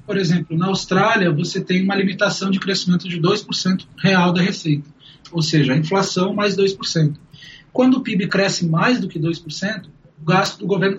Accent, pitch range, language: Brazilian, 165-200 Hz, Portuguese